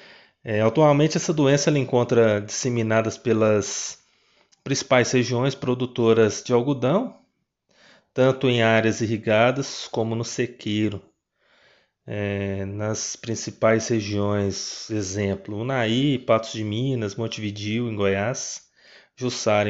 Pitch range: 105-125 Hz